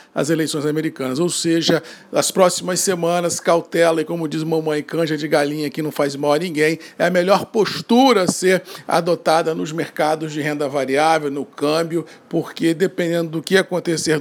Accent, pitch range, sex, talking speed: Brazilian, 155-185 Hz, male, 170 wpm